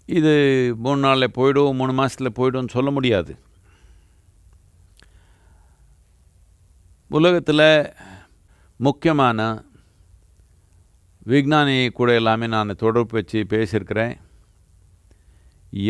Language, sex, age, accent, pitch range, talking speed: Tamil, male, 50-69, native, 90-135 Hz, 70 wpm